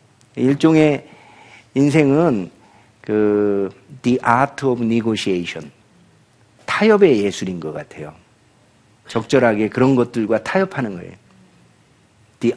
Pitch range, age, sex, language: 120-190 Hz, 50-69, male, Korean